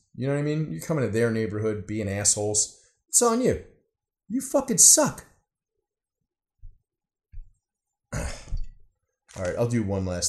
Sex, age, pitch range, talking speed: male, 30-49, 95-130 Hz, 140 wpm